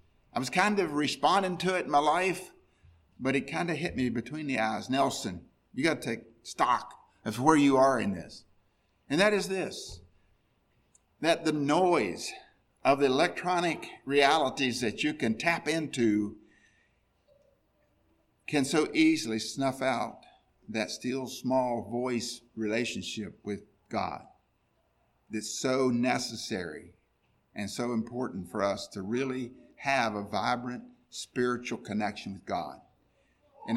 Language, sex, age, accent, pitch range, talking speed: English, male, 50-69, American, 110-155 Hz, 135 wpm